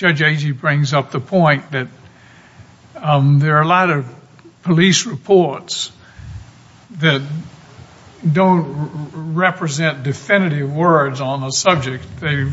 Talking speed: 120 wpm